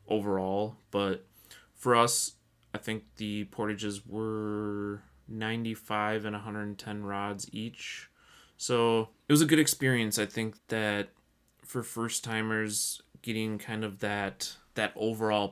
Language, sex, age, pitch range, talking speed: English, male, 20-39, 100-110 Hz, 125 wpm